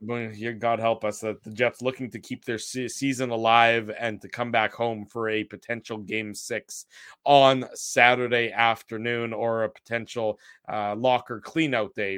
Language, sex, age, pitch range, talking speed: English, male, 20-39, 110-125 Hz, 165 wpm